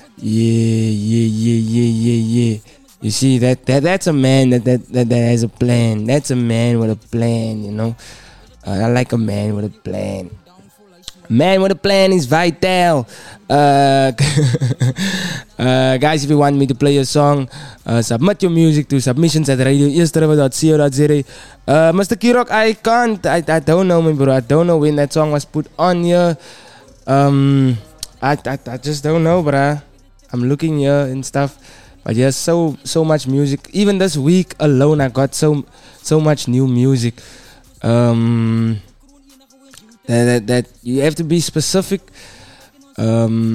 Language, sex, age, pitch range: English, male, 20-39, 115-155 Hz